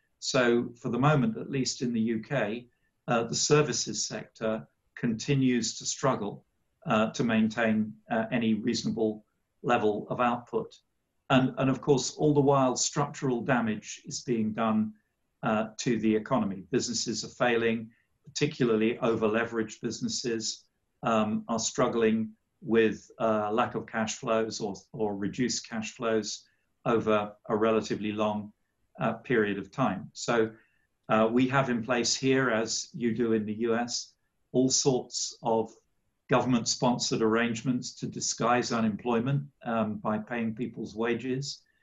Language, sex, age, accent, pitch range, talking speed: English, male, 50-69, British, 110-125 Hz, 140 wpm